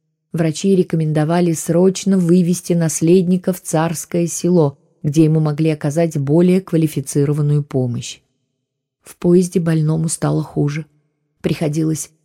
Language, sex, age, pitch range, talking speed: Russian, female, 20-39, 150-185 Hz, 105 wpm